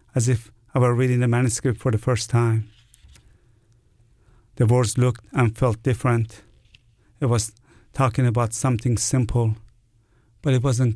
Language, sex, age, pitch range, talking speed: English, male, 50-69, 115-130 Hz, 140 wpm